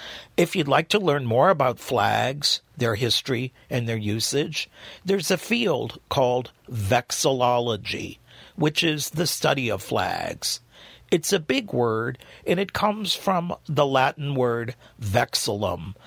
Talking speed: 135 wpm